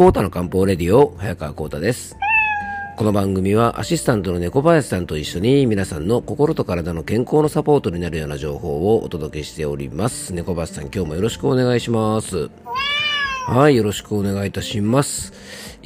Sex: male